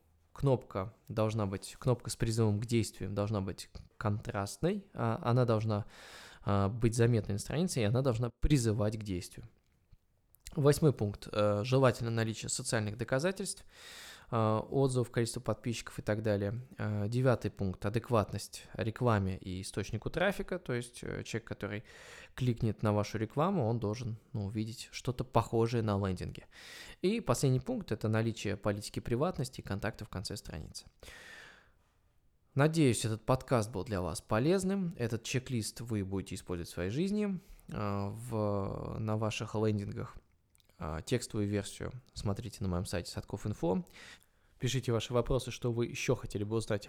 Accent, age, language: native, 20-39, Russian